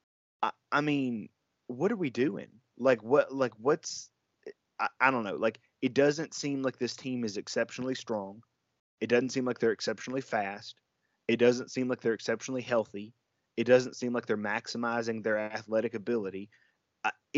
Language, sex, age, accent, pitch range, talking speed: English, male, 20-39, American, 110-125 Hz, 165 wpm